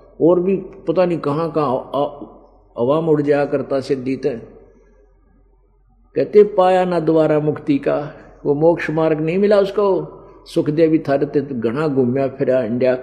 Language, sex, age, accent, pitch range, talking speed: Hindi, male, 50-69, native, 145-180 Hz, 140 wpm